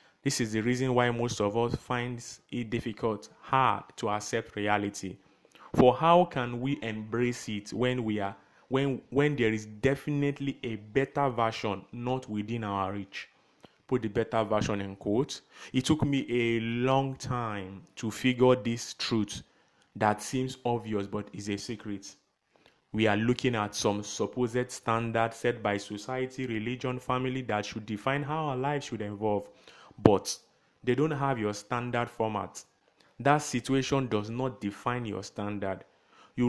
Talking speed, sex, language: 155 wpm, male, English